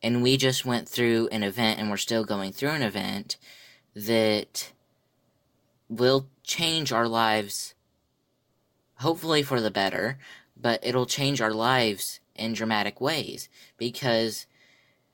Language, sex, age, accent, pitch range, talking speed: English, female, 10-29, American, 105-125 Hz, 125 wpm